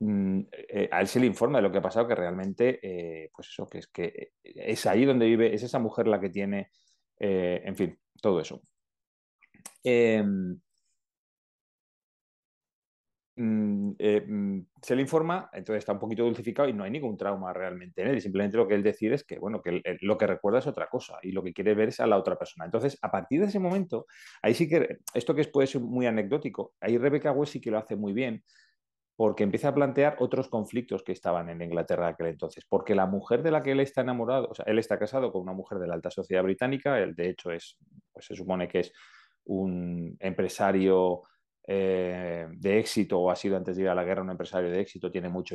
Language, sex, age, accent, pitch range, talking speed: Spanish, male, 30-49, Spanish, 95-130 Hz, 225 wpm